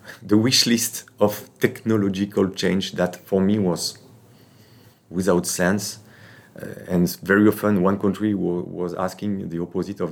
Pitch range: 90-110 Hz